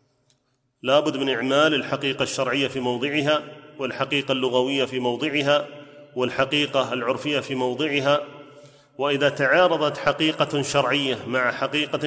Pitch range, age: 135-150 Hz, 30-49